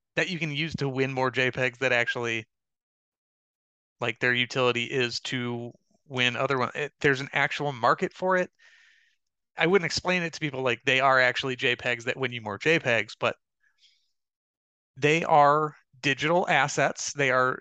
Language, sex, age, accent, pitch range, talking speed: English, male, 30-49, American, 125-150 Hz, 165 wpm